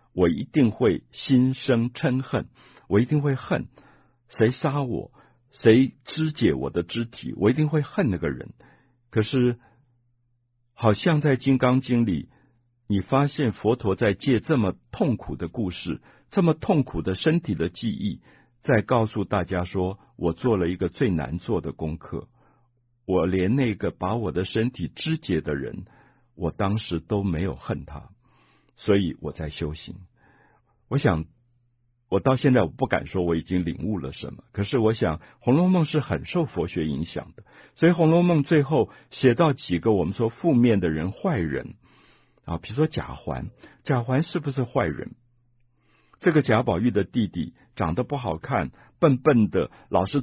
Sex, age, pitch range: male, 60-79, 90-135 Hz